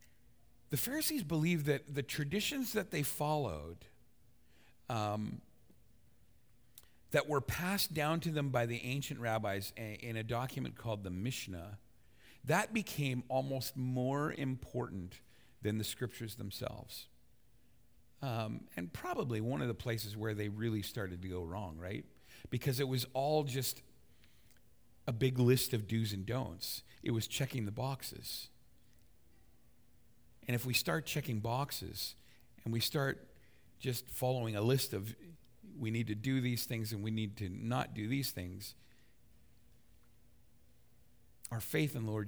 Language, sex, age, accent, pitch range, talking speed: English, male, 50-69, American, 105-125 Hz, 140 wpm